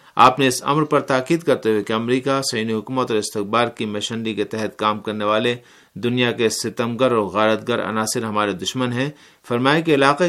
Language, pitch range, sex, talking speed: Urdu, 105-130 Hz, male, 190 wpm